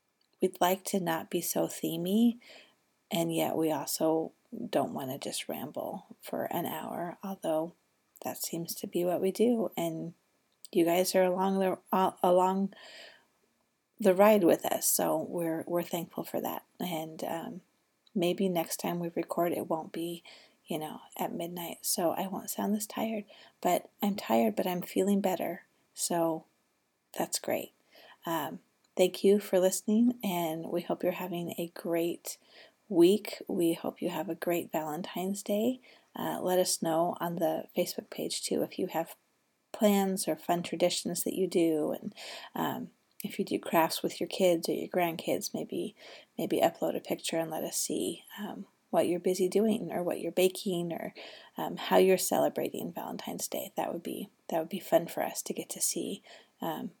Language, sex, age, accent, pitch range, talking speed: English, female, 30-49, American, 170-200 Hz, 175 wpm